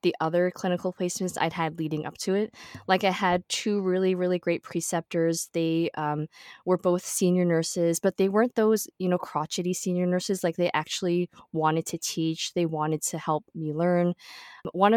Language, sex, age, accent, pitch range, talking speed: English, female, 20-39, American, 165-190 Hz, 185 wpm